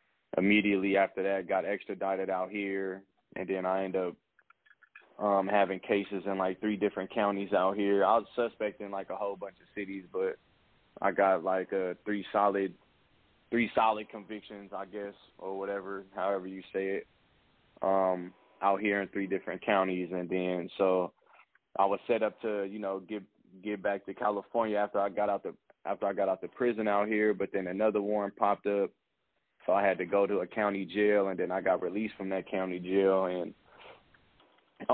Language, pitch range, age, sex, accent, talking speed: English, 95-105 Hz, 20-39, male, American, 190 wpm